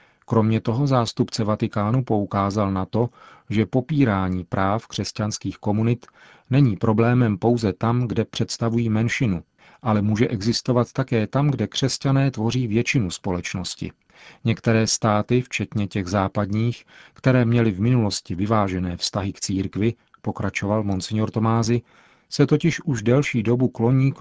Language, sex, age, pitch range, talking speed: Czech, male, 40-59, 105-120 Hz, 130 wpm